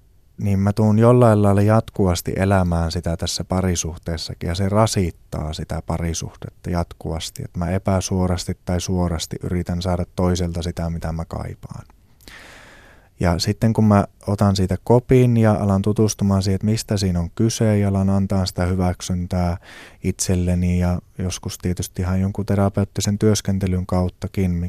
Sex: male